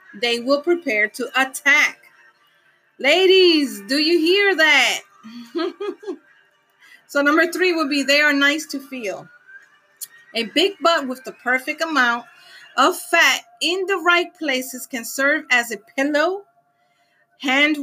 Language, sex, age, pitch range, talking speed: English, female, 30-49, 235-320 Hz, 130 wpm